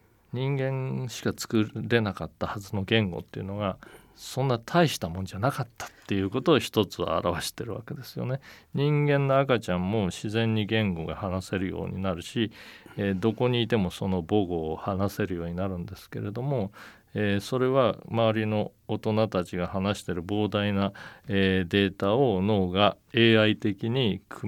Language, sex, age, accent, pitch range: Japanese, male, 40-59, native, 95-115 Hz